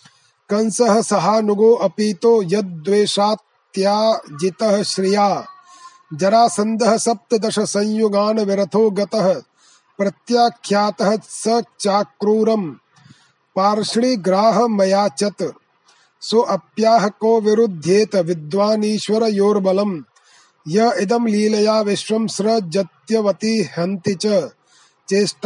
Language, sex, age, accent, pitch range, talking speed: Hindi, male, 30-49, native, 195-220 Hz, 45 wpm